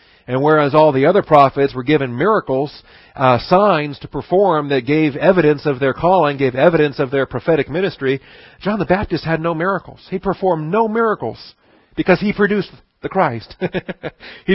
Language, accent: English, American